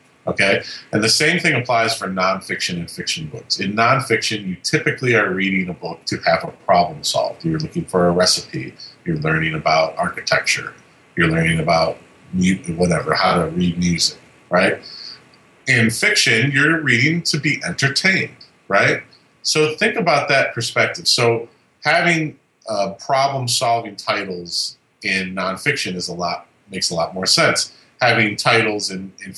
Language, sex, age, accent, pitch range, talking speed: English, male, 40-59, American, 90-125 Hz, 155 wpm